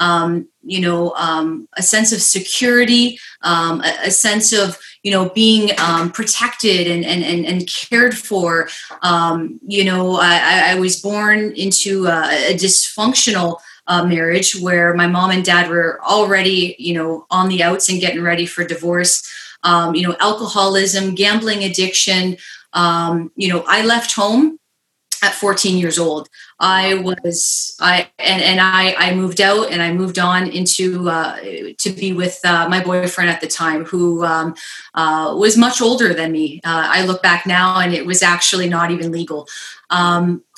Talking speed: 170 wpm